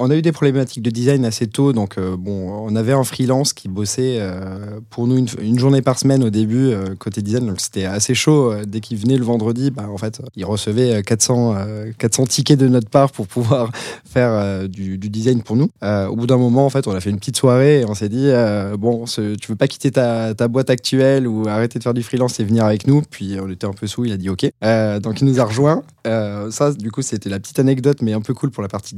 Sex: male